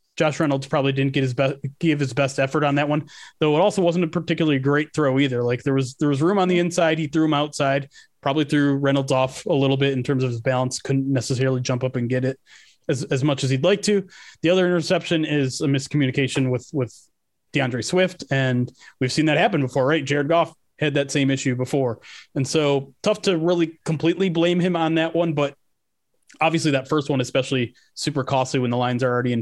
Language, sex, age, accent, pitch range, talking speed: English, male, 20-39, American, 130-160 Hz, 225 wpm